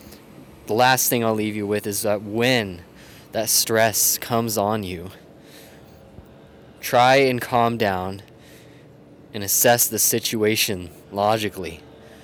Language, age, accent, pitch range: English, 20-39, American, 110-145 Hz